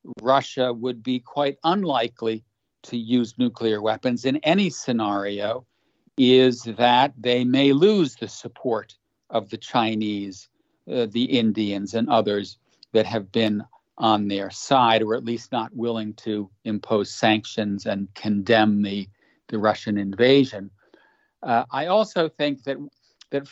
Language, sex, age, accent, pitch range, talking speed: English, male, 50-69, American, 115-140 Hz, 135 wpm